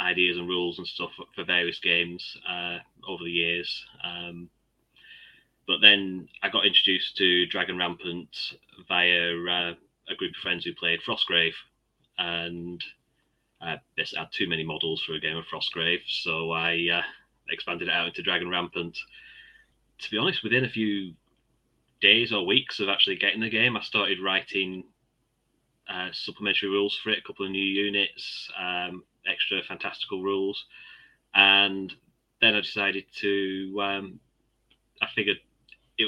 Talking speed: 150 wpm